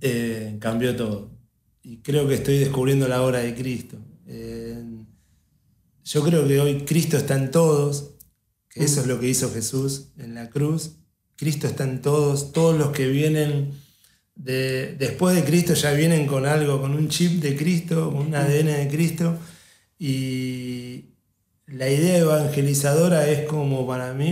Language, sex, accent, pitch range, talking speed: Spanish, male, Argentinian, 125-150 Hz, 160 wpm